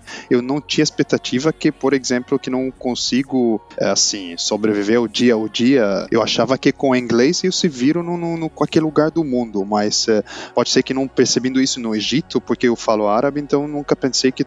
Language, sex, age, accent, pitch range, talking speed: Portuguese, male, 10-29, Brazilian, 115-135 Hz, 205 wpm